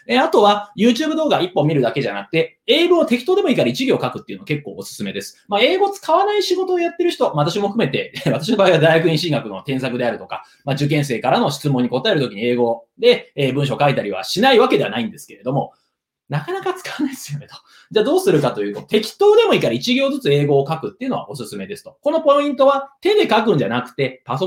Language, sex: Japanese, male